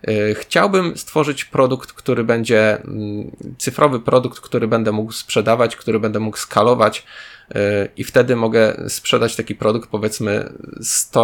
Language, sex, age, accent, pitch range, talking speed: Polish, male, 20-39, native, 105-120 Hz, 125 wpm